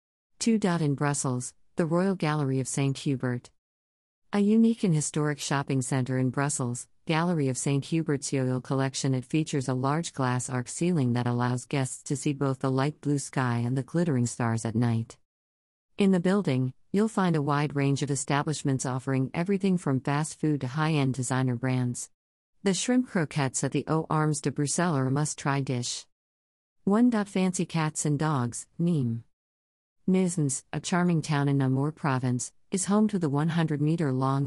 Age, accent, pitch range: 50-69, American, 130-165 Hz